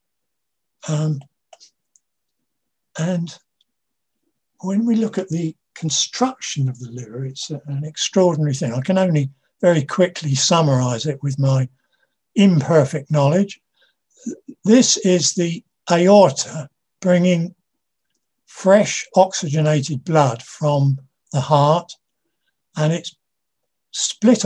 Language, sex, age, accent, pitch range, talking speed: English, male, 60-79, British, 140-180 Hz, 100 wpm